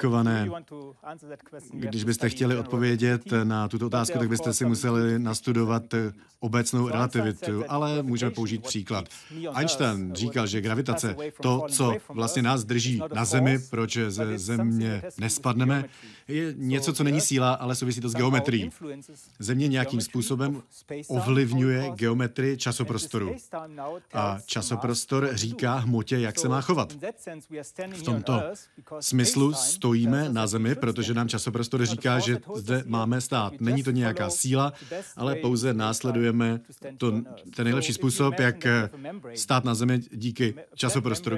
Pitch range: 115-135 Hz